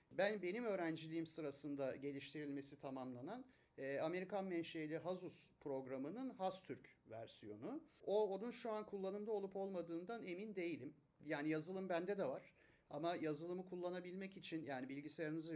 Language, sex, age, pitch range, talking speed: Turkish, male, 40-59, 145-185 Hz, 125 wpm